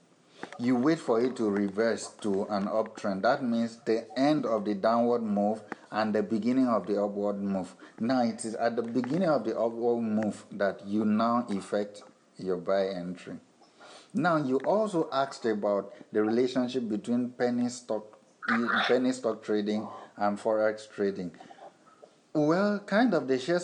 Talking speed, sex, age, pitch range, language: 155 wpm, male, 60-79, 110-145 Hz, English